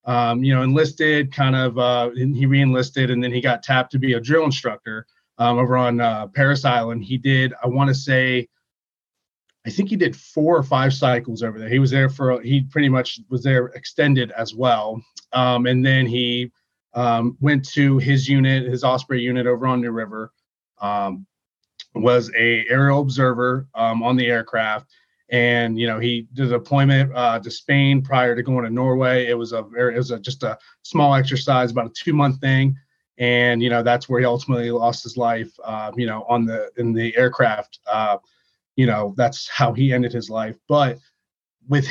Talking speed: 200 wpm